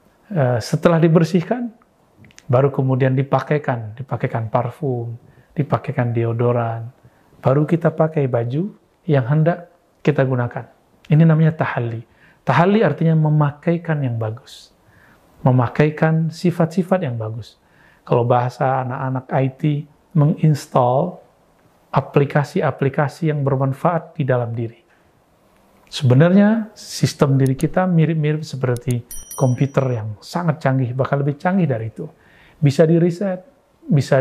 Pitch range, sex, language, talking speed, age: 130-160 Hz, male, Indonesian, 100 wpm, 40-59